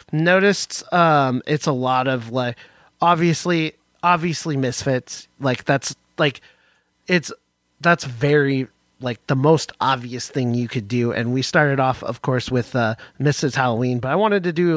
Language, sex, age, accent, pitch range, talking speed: English, male, 30-49, American, 125-155 Hz, 160 wpm